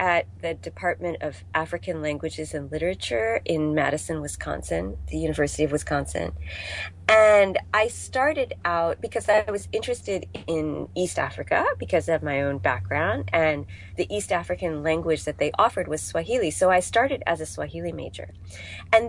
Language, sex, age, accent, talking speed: English, female, 30-49, American, 155 wpm